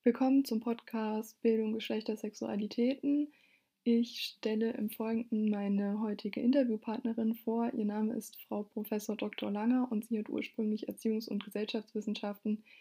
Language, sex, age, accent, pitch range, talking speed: German, female, 20-39, German, 210-240 Hz, 130 wpm